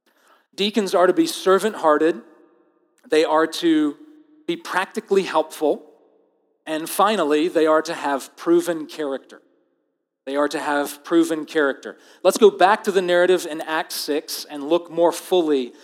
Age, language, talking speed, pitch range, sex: 40-59, English, 145 wpm, 150-205 Hz, male